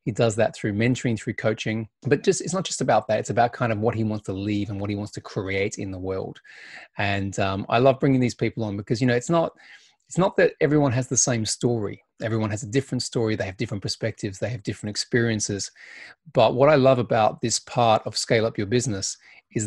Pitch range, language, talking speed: 105-130 Hz, English, 235 wpm